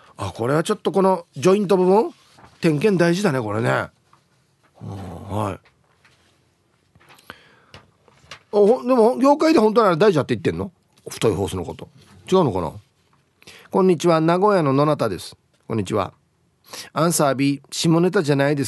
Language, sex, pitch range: Japanese, male, 130-195 Hz